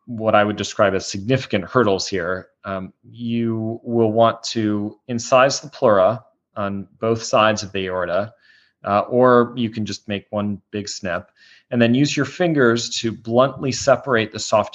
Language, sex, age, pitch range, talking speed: English, male, 30-49, 100-115 Hz, 165 wpm